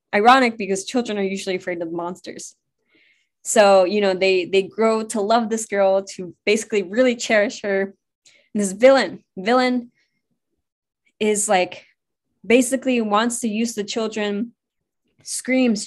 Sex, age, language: female, 10-29, English